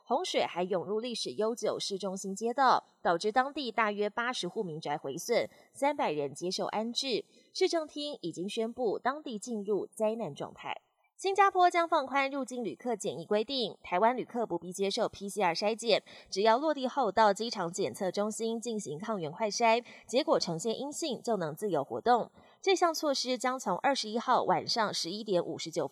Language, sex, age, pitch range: Chinese, female, 20-39, 190-255 Hz